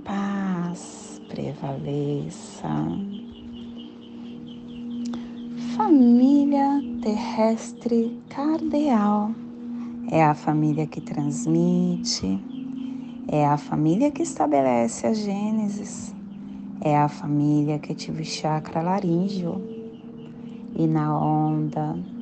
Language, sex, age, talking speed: Portuguese, female, 30-49, 75 wpm